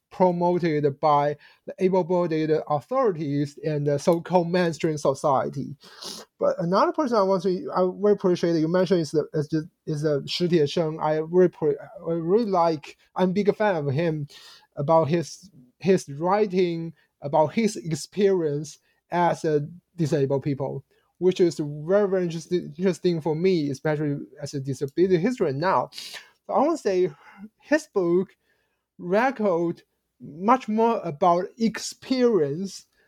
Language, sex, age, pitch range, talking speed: English, male, 20-39, 150-190 Hz, 140 wpm